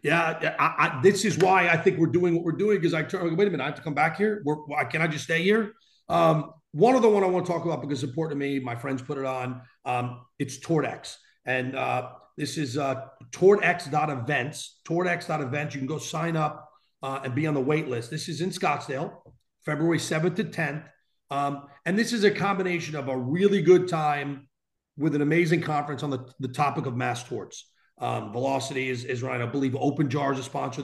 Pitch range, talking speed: 135-165 Hz, 220 wpm